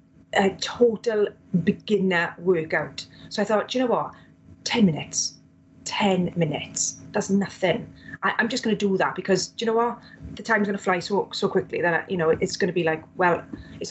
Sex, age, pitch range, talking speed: female, 30-49, 190-240 Hz, 205 wpm